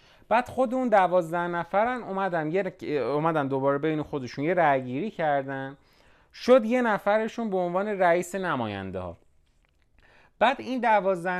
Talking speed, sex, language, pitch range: 130 wpm, male, Persian, 125-195 Hz